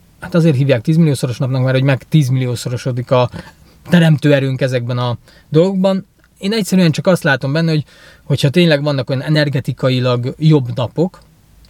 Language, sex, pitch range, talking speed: Hungarian, male, 130-160 Hz, 160 wpm